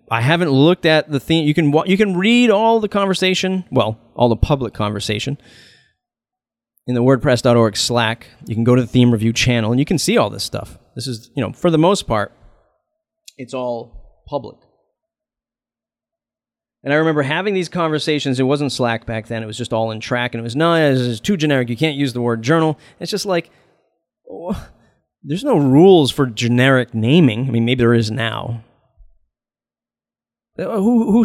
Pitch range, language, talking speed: 120-170 Hz, English, 185 wpm